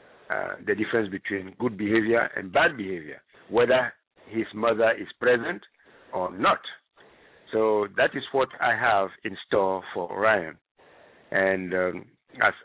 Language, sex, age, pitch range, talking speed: English, male, 60-79, 105-135 Hz, 140 wpm